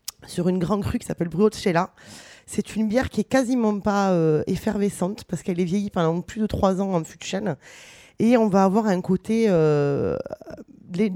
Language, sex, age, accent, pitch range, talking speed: French, female, 20-39, French, 170-215 Hz, 195 wpm